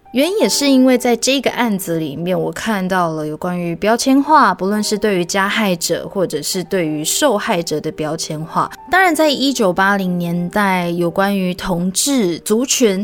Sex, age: female, 20-39